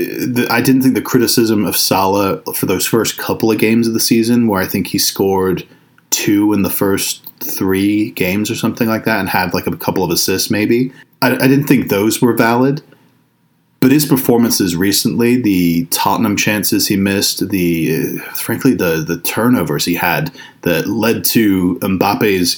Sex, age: male, 30-49